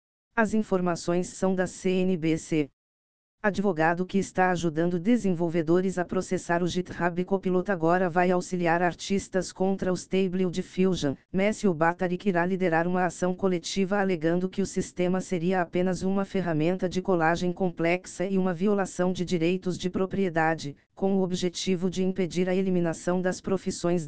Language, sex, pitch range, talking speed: Portuguese, female, 170-190 Hz, 140 wpm